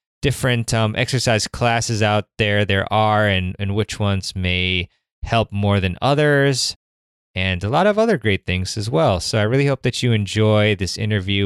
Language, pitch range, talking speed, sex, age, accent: English, 95-120 Hz, 185 wpm, male, 20-39, American